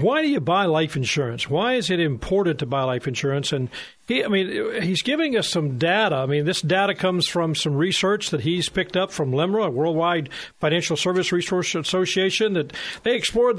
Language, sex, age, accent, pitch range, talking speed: English, male, 40-59, American, 155-215 Hz, 205 wpm